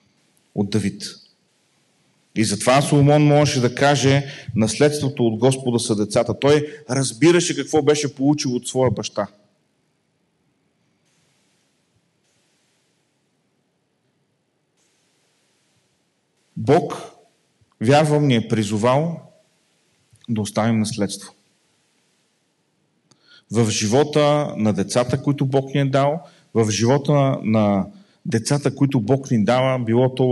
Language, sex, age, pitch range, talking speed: Bulgarian, male, 40-59, 115-150 Hz, 95 wpm